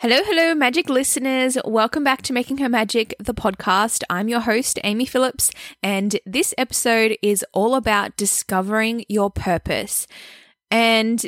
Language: English